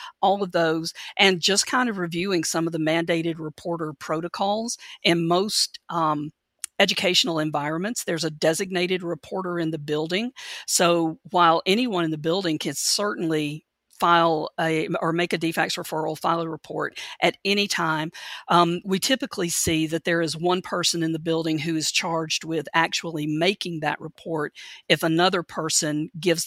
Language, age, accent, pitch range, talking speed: English, 50-69, American, 160-185 Hz, 160 wpm